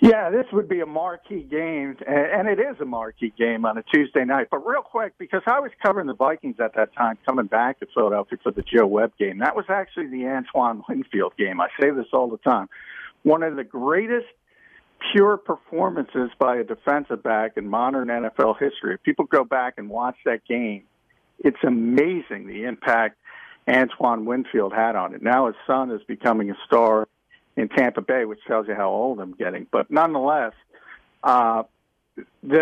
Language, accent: English, American